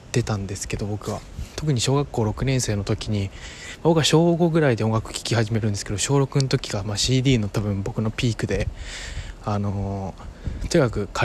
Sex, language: male, Japanese